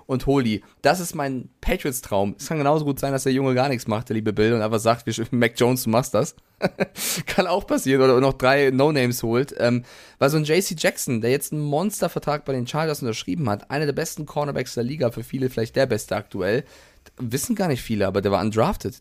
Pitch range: 115-135 Hz